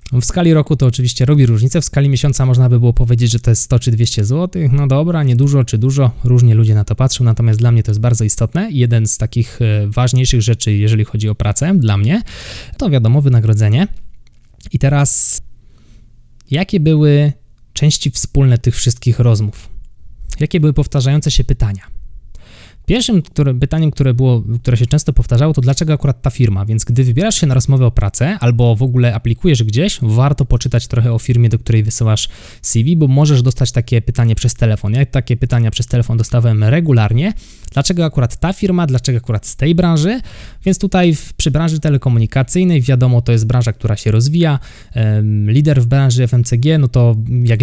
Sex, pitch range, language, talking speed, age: male, 115-140 Hz, Polish, 180 wpm, 20-39